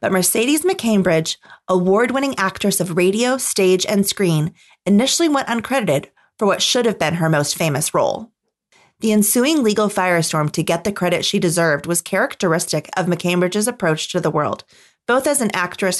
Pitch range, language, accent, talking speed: 170-225 Hz, English, American, 165 wpm